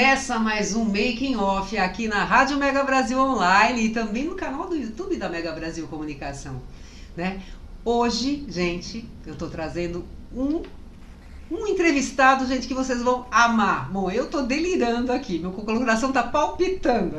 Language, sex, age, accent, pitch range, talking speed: Portuguese, female, 50-69, Brazilian, 185-265 Hz, 155 wpm